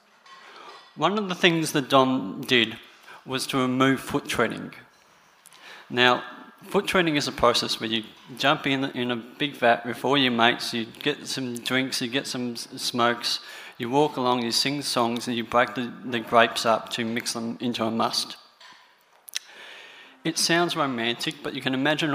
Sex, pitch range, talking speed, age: male, 120-140 Hz, 170 wpm, 30-49